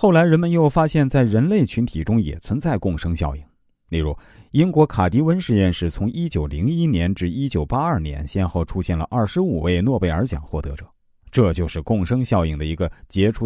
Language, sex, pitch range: Chinese, male, 80-125 Hz